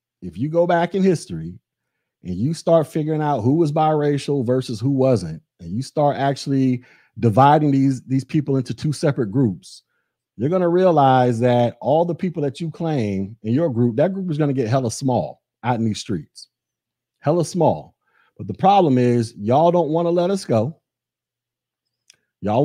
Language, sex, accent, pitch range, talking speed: English, male, American, 130-180 Hz, 185 wpm